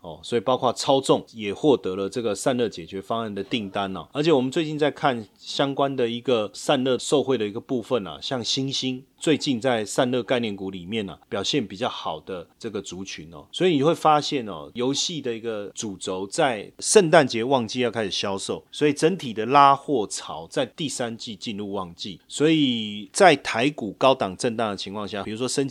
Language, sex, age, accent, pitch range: Chinese, male, 30-49, native, 105-140 Hz